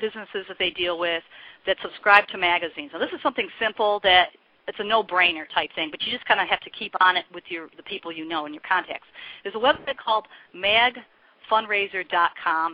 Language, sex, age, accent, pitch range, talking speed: English, female, 40-59, American, 175-215 Hz, 205 wpm